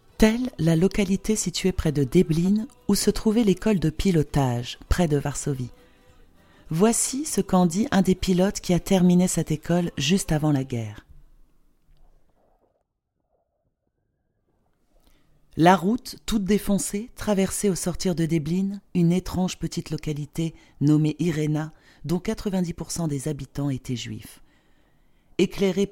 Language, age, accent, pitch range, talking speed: French, 40-59, French, 140-180 Hz, 125 wpm